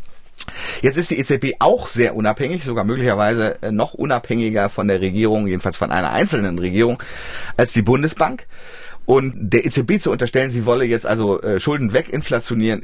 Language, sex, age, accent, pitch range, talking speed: German, male, 30-49, German, 100-125 Hz, 155 wpm